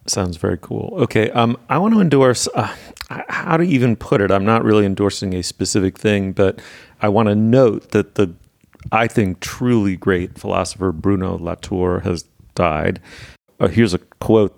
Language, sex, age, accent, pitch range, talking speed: English, male, 40-59, American, 85-110 Hz, 175 wpm